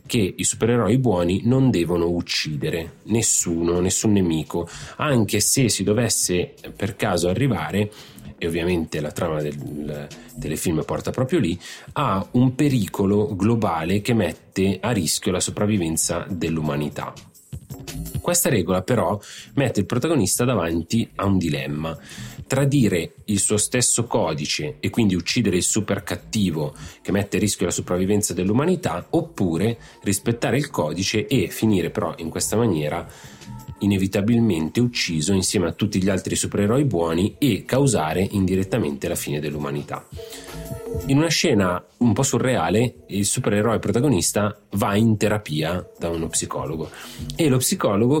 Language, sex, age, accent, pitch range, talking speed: Italian, male, 30-49, native, 85-110 Hz, 135 wpm